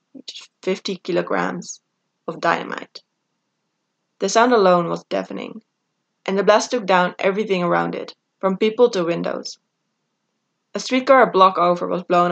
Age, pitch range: 20-39, 175-225 Hz